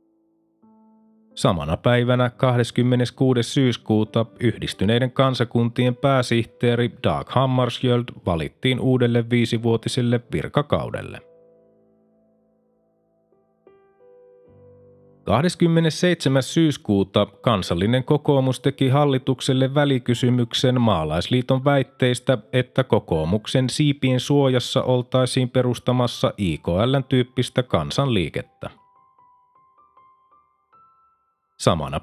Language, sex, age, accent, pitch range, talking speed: Finnish, male, 30-49, native, 120-145 Hz, 60 wpm